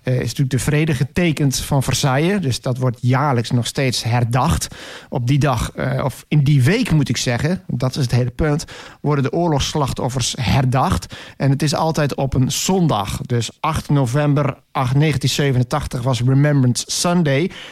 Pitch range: 130-155 Hz